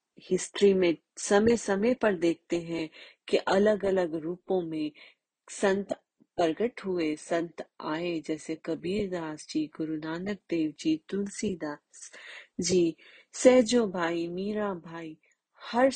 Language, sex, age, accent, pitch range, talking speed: Hindi, female, 30-49, native, 165-215 Hz, 100 wpm